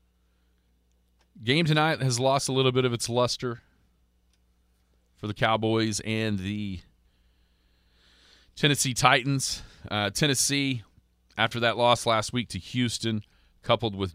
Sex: male